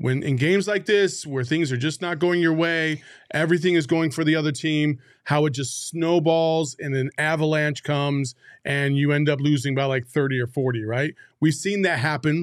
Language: English